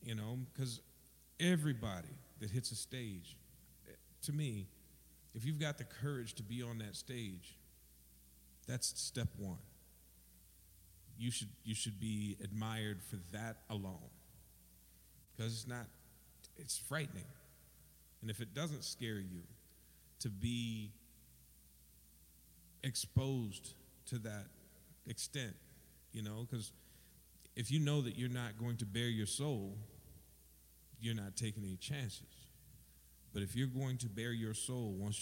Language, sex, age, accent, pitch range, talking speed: English, male, 50-69, American, 90-120 Hz, 130 wpm